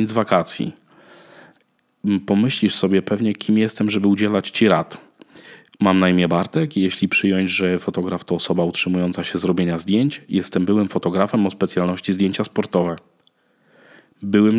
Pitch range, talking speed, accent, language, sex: 90-110 Hz, 140 wpm, native, Polish, male